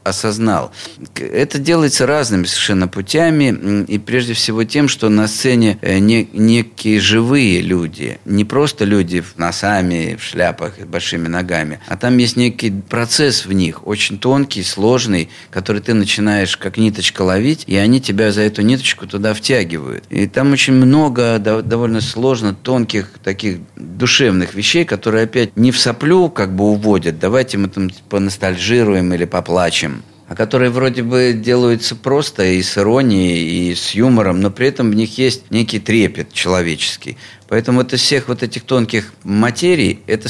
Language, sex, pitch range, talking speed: Russian, male, 95-120 Hz, 150 wpm